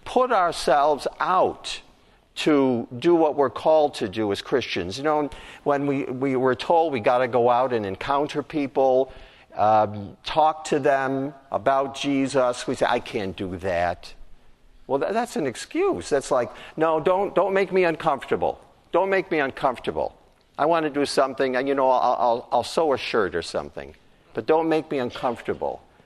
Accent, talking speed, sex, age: American, 175 wpm, male, 50-69